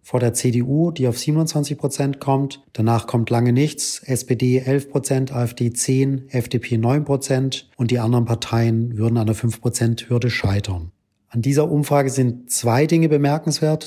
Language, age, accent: German, 40-59, German